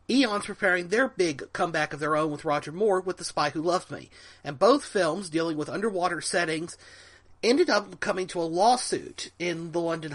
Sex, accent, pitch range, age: male, American, 160-205 Hz, 40-59